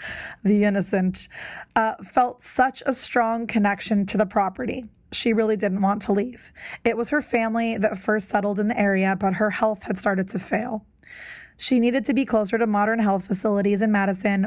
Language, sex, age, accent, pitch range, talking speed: English, female, 20-39, American, 200-230 Hz, 185 wpm